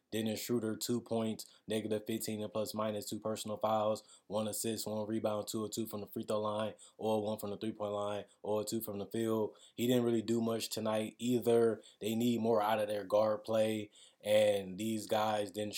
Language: English